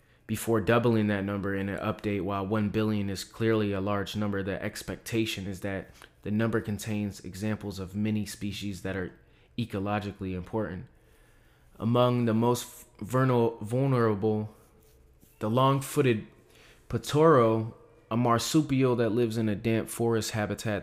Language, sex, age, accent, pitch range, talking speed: English, male, 20-39, American, 100-115 Hz, 135 wpm